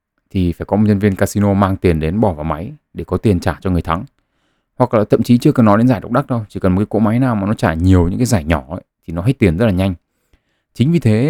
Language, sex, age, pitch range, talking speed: Vietnamese, male, 20-39, 85-110 Hz, 305 wpm